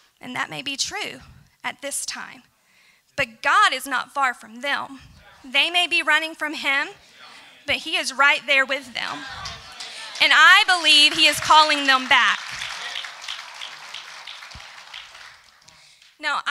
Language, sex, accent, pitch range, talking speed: English, female, American, 260-310 Hz, 135 wpm